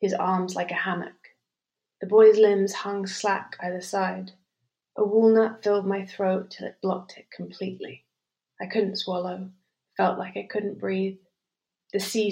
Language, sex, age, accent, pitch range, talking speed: English, female, 30-49, British, 190-215 Hz, 155 wpm